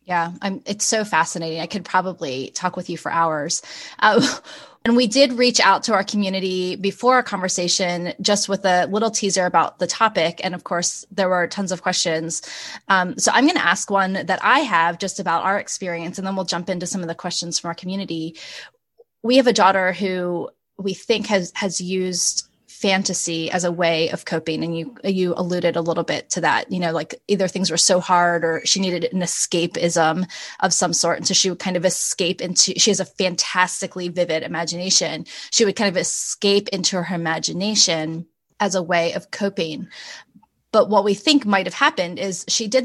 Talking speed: 200 wpm